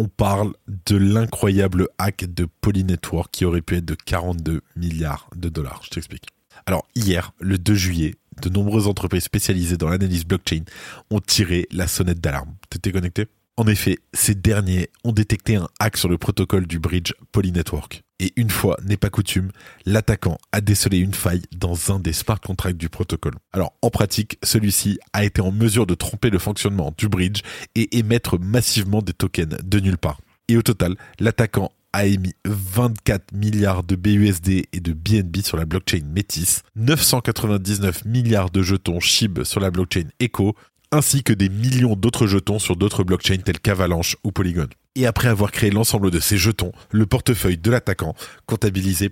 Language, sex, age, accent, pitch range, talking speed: French, male, 20-39, French, 90-105 Hz, 175 wpm